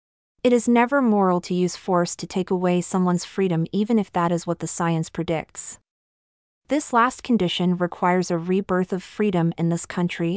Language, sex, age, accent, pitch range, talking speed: English, female, 30-49, American, 170-210 Hz, 180 wpm